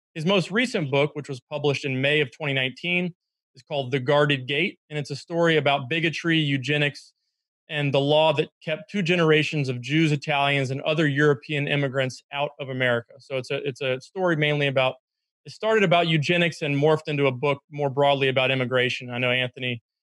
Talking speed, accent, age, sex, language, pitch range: 190 wpm, American, 30-49, male, English, 135-155 Hz